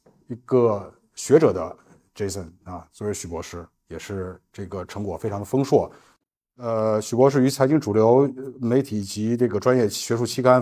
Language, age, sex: Chinese, 50-69, male